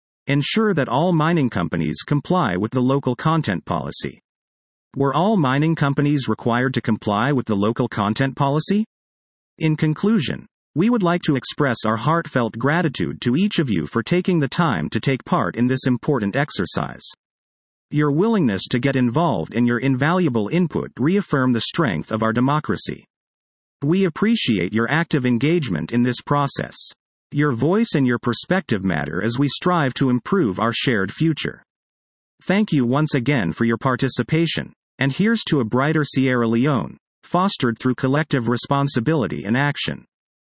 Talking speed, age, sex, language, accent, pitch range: 155 wpm, 40-59, male, English, American, 120-165 Hz